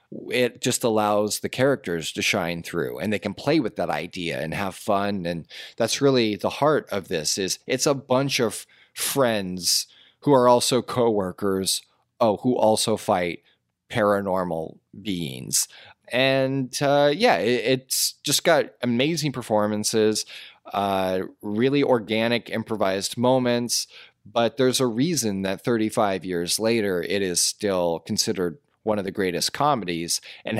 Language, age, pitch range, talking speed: English, 30-49, 100-125 Hz, 145 wpm